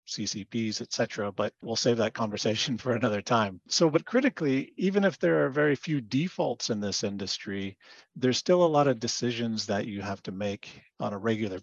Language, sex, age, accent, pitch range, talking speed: English, male, 50-69, American, 105-130 Hz, 195 wpm